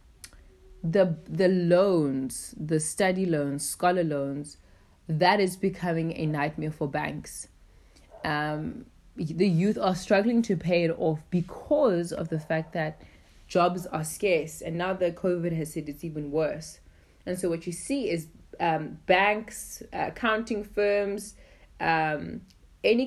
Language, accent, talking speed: English, South African, 140 wpm